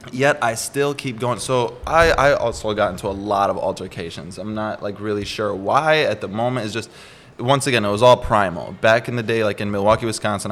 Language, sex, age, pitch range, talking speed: English, male, 20-39, 100-120 Hz, 230 wpm